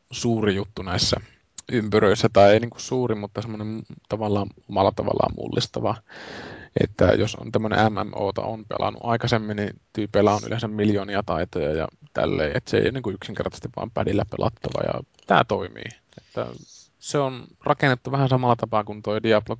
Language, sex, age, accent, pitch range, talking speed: Finnish, male, 20-39, native, 105-120 Hz, 155 wpm